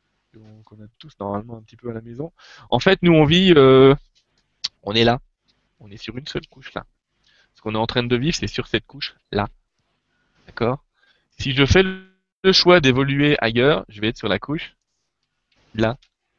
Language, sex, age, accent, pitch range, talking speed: French, male, 20-39, French, 115-155 Hz, 195 wpm